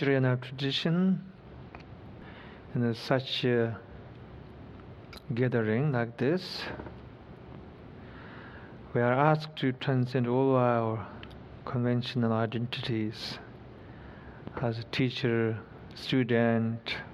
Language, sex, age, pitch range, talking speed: English, male, 50-69, 115-130 Hz, 75 wpm